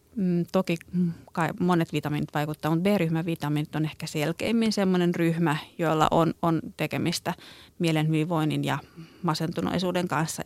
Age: 30-49